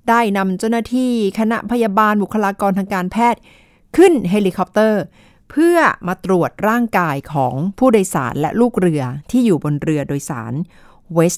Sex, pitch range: female, 155-210 Hz